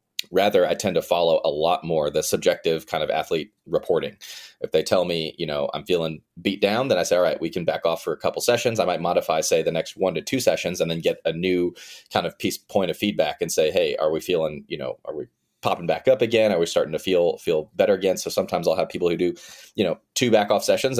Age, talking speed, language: 30-49, 265 wpm, English